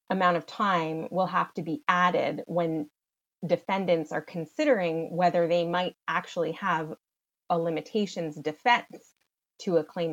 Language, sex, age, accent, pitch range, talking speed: English, female, 20-39, American, 160-185 Hz, 135 wpm